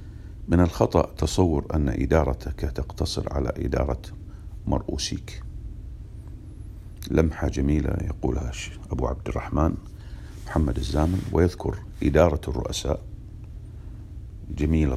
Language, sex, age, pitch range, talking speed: English, male, 50-69, 75-100 Hz, 85 wpm